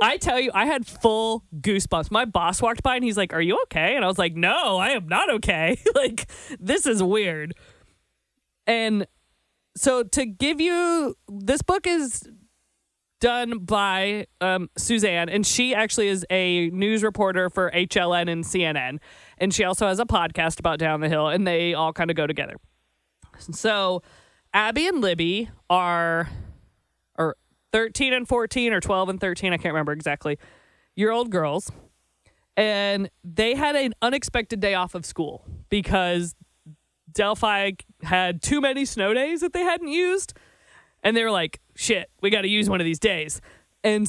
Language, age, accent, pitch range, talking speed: English, 20-39, American, 170-235 Hz, 165 wpm